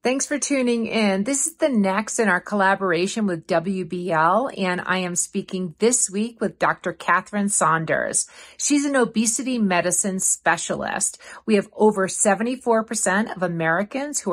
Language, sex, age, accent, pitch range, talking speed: English, female, 50-69, American, 185-225 Hz, 145 wpm